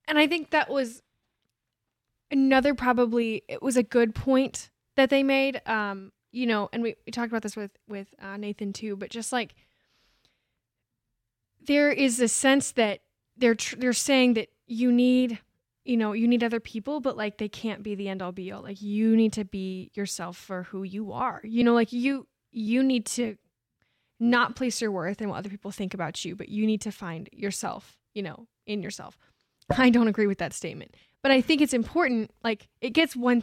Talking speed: 200 wpm